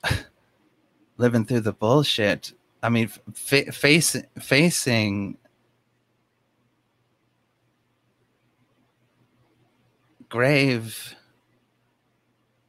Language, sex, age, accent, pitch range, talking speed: English, male, 30-49, American, 95-120 Hz, 45 wpm